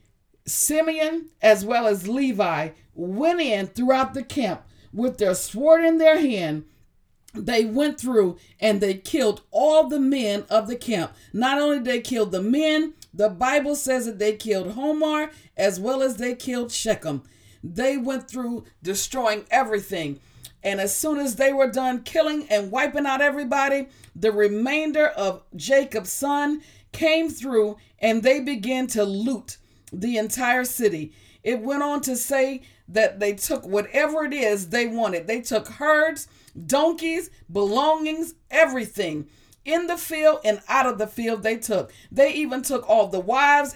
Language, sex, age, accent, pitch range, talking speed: English, female, 50-69, American, 210-290 Hz, 160 wpm